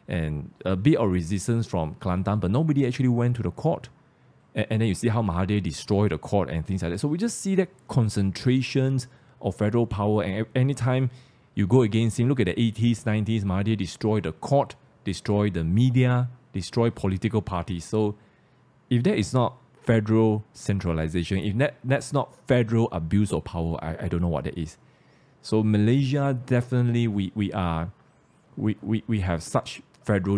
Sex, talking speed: male, 180 wpm